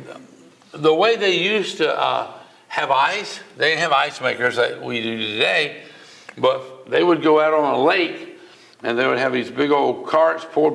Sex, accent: male, American